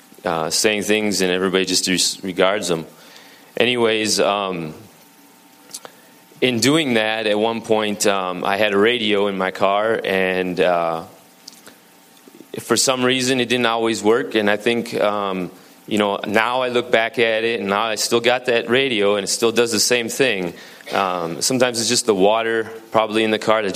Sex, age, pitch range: male, 30-49, 100-115 Hz